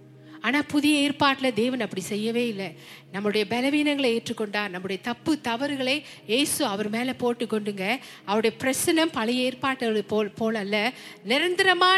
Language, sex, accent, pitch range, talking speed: Tamil, female, native, 200-270 Hz, 130 wpm